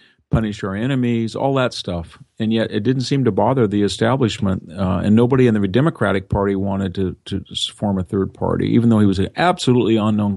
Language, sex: English, male